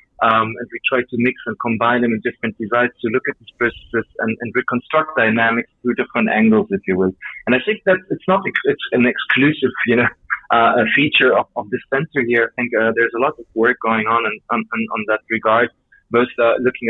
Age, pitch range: 30-49, 110-130 Hz